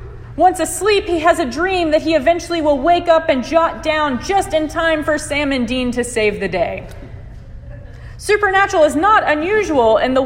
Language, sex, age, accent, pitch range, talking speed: English, female, 30-49, American, 235-330 Hz, 185 wpm